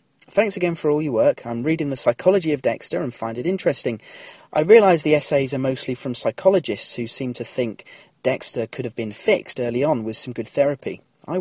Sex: male